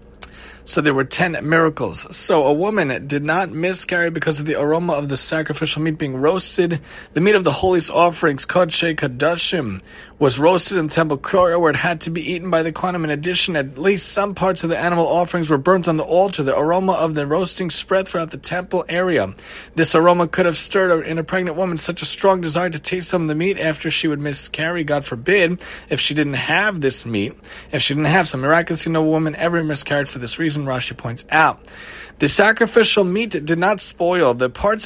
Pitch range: 150-180 Hz